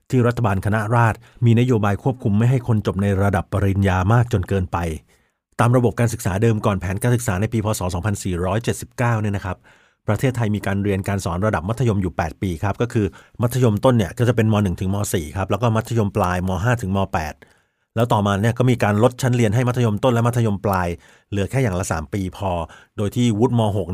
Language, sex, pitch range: Thai, male, 100-115 Hz